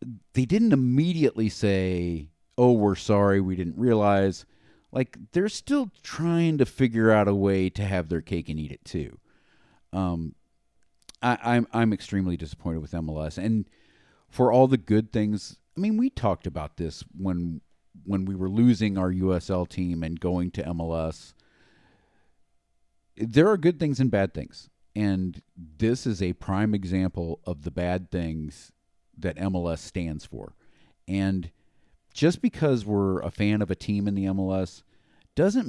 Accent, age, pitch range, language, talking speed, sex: American, 50-69, 90-115 Hz, English, 155 wpm, male